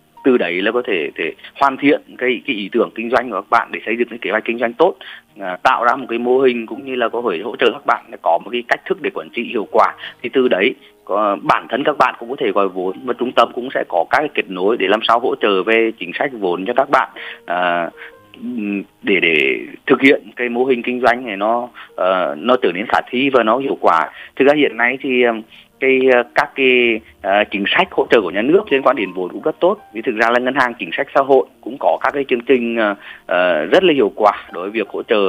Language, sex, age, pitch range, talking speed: Vietnamese, male, 20-39, 110-130 Hz, 270 wpm